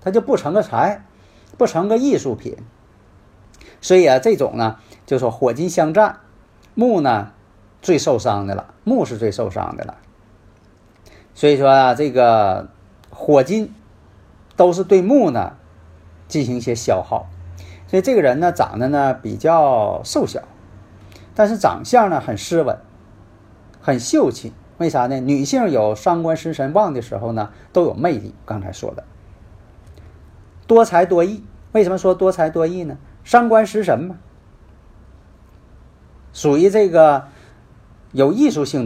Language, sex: Chinese, male